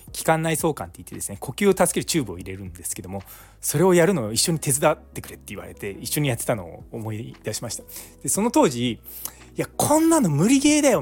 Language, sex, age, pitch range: Japanese, male, 20-39, 105-160 Hz